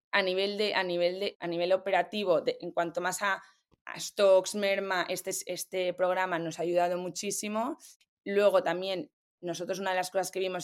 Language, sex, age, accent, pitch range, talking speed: Spanish, female, 20-39, Spanish, 175-195 Hz, 185 wpm